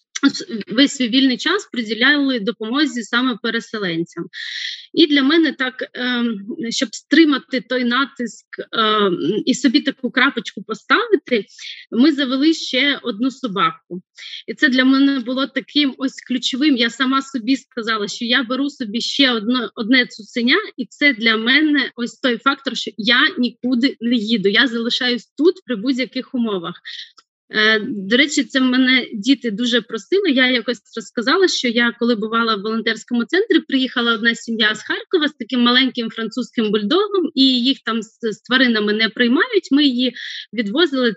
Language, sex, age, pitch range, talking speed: Ukrainian, female, 30-49, 230-285 Hz, 145 wpm